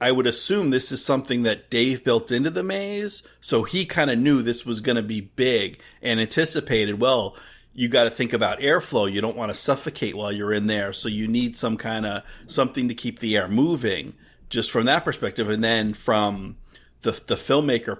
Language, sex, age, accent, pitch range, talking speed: English, male, 30-49, American, 105-130 Hz, 210 wpm